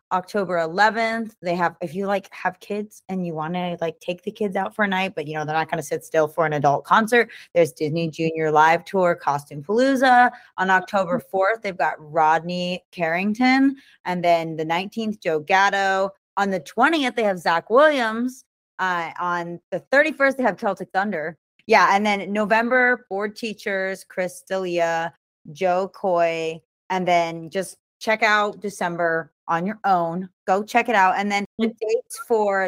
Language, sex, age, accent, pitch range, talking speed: English, female, 20-39, American, 165-205 Hz, 180 wpm